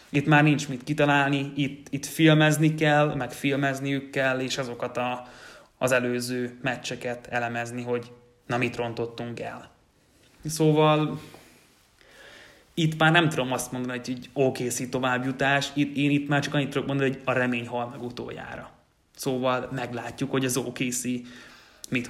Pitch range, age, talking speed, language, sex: 125-145 Hz, 20-39, 140 wpm, Hungarian, male